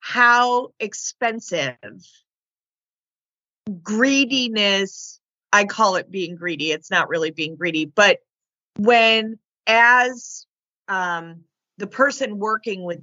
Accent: American